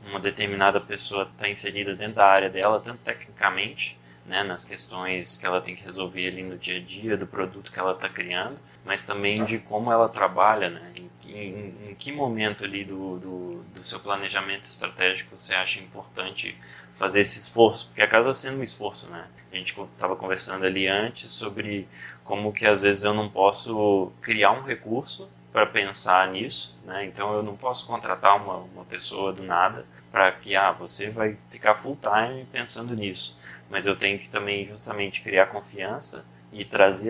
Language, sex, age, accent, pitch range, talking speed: Portuguese, male, 20-39, Brazilian, 90-105 Hz, 180 wpm